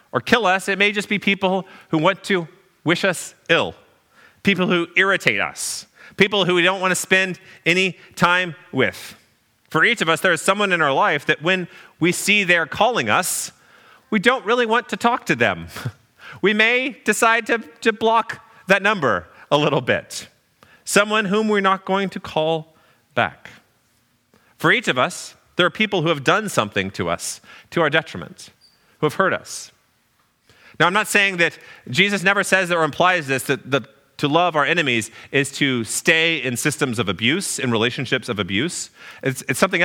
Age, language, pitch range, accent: 30-49, English, 130-190 Hz, American